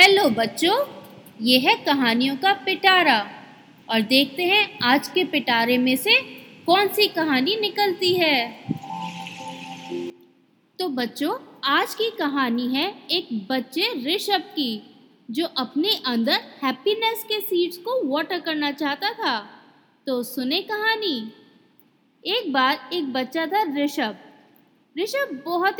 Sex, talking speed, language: female, 120 wpm, Hindi